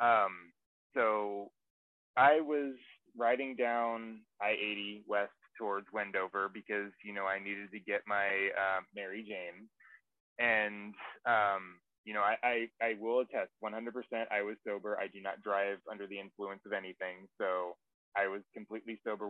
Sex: male